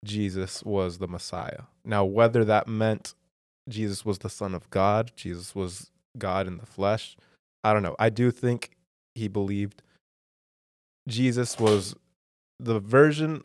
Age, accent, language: 20-39, American, English